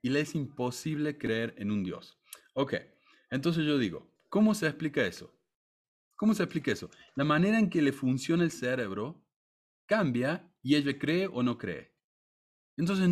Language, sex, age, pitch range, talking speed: Spanish, male, 30-49, 115-155 Hz, 165 wpm